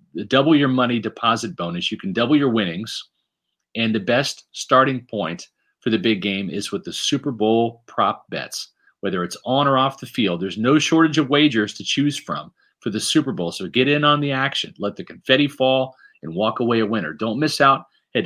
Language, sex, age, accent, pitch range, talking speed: English, male, 40-59, American, 105-135 Hz, 210 wpm